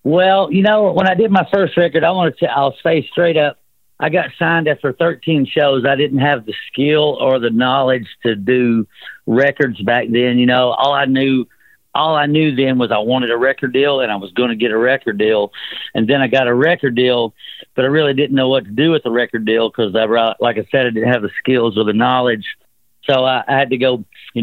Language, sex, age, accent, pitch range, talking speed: English, male, 50-69, American, 125-145 Hz, 240 wpm